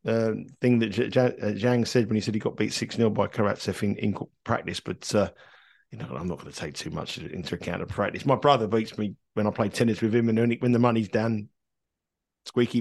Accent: British